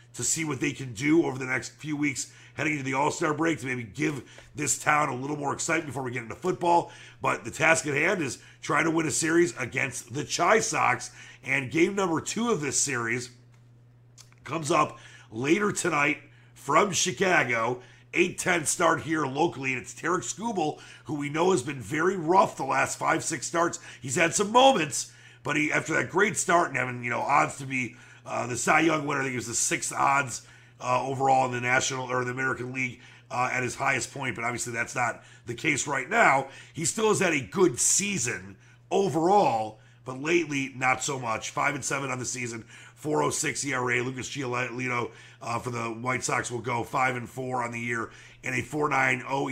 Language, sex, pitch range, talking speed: English, male, 120-150 Hz, 205 wpm